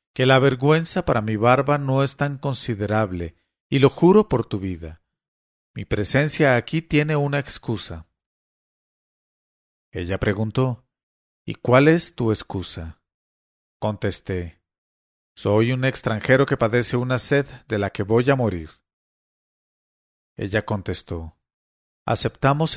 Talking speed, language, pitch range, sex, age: 120 wpm, English, 95-135 Hz, male, 40-59